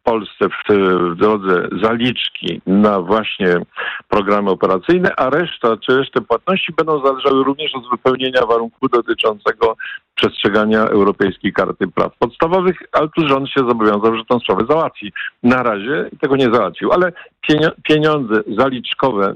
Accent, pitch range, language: native, 110-150 Hz, Polish